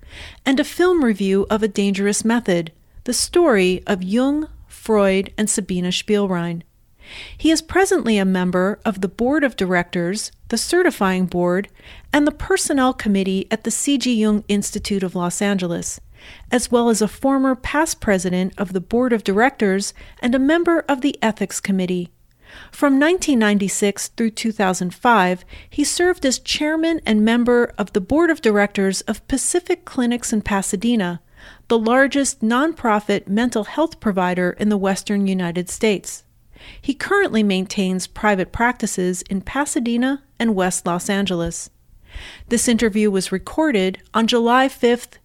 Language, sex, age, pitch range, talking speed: English, female, 40-59, 195-260 Hz, 145 wpm